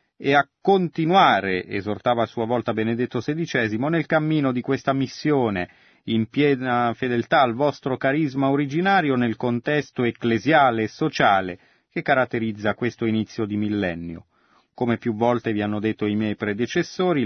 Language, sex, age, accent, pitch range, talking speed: Italian, male, 30-49, native, 110-145 Hz, 145 wpm